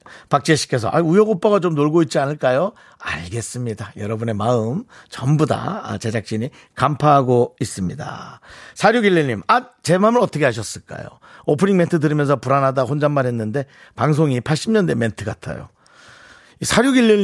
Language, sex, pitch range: Korean, male, 115-155 Hz